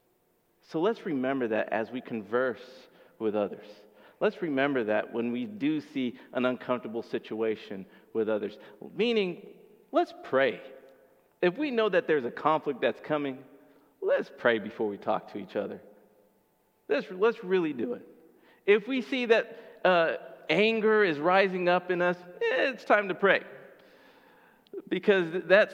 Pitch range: 145-195 Hz